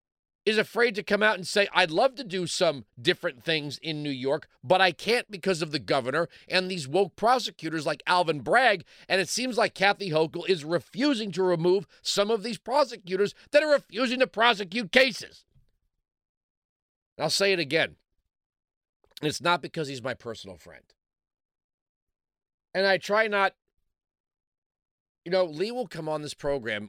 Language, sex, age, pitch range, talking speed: English, male, 40-59, 140-200 Hz, 165 wpm